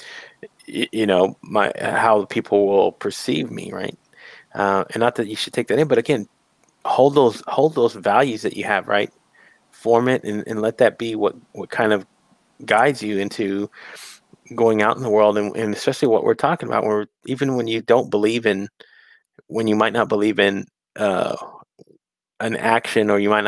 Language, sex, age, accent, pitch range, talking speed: English, male, 30-49, American, 100-115 Hz, 190 wpm